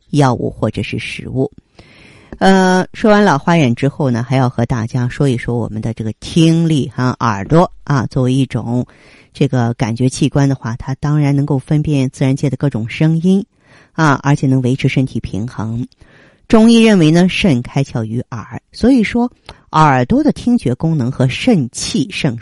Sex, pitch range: female, 120-165 Hz